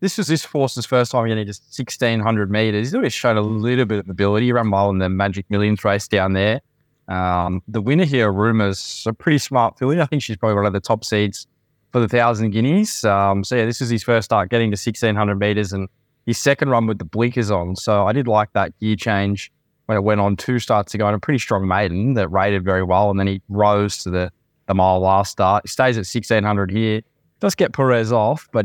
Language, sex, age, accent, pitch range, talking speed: English, male, 20-39, Australian, 95-120 Hz, 235 wpm